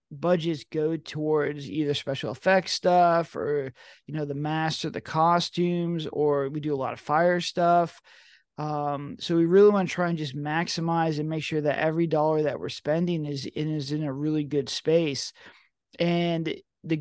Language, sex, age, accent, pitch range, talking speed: English, male, 30-49, American, 150-170 Hz, 185 wpm